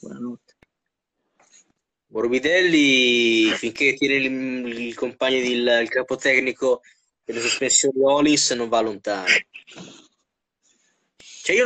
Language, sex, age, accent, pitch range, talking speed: Italian, male, 20-39, native, 120-160 Hz, 80 wpm